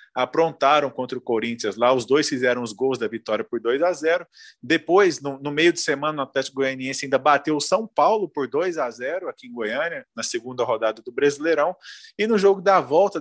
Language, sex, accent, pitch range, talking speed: Portuguese, male, Brazilian, 125-170 Hz, 215 wpm